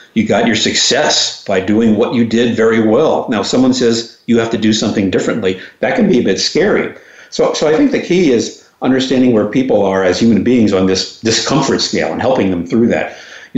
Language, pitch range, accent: English, 95-125 Hz, American